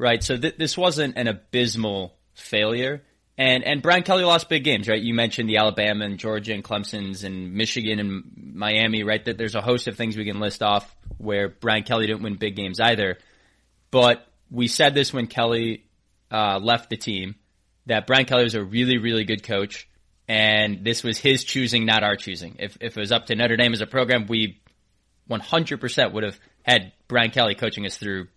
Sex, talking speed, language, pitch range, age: male, 200 wpm, English, 105-125 Hz, 20-39